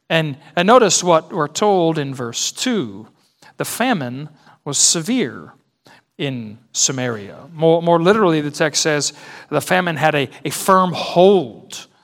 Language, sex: English, male